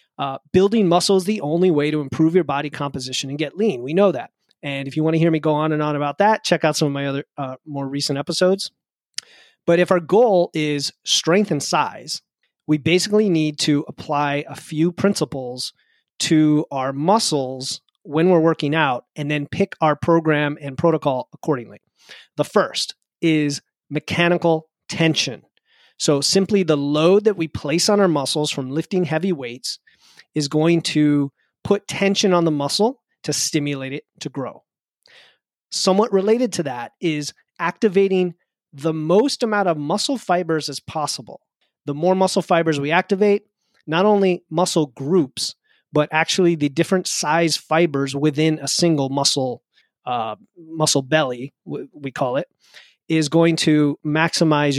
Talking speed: 160 wpm